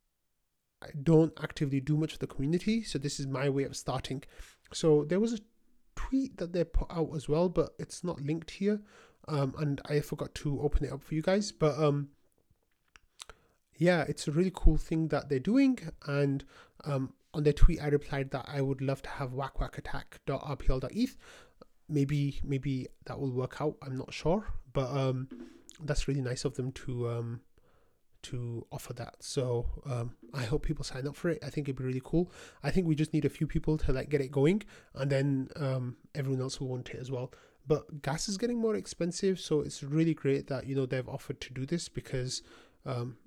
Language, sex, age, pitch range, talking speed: English, male, 30-49, 135-160 Hz, 205 wpm